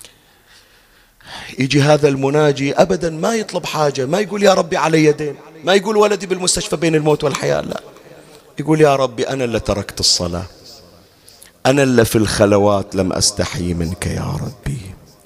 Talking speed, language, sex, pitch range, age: 145 wpm, Arabic, male, 120-170 Hz, 40-59